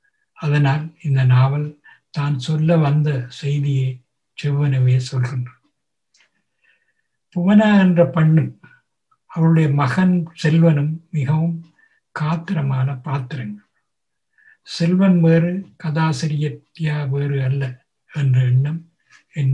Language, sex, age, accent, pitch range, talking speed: Tamil, male, 60-79, native, 140-170 Hz, 80 wpm